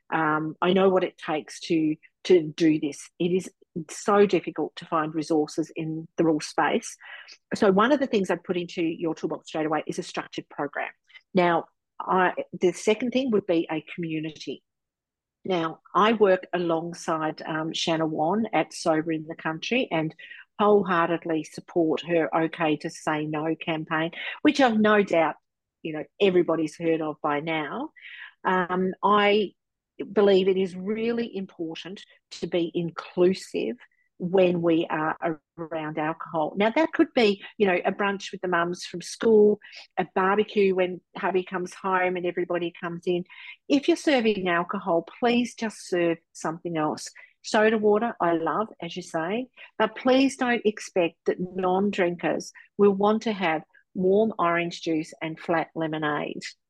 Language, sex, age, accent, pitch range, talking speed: English, female, 50-69, Australian, 160-205 Hz, 155 wpm